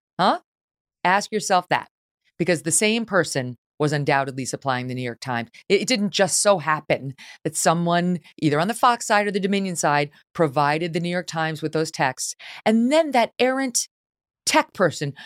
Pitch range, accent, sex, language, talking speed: 145-195 Hz, American, female, English, 180 wpm